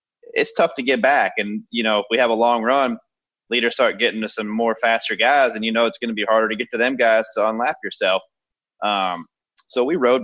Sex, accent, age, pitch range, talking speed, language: male, American, 20-39, 100-115 Hz, 245 wpm, English